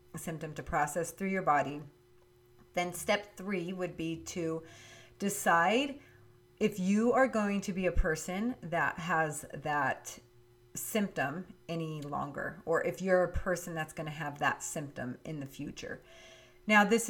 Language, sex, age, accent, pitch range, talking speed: English, female, 30-49, American, 145-185 Hz, 150 wpm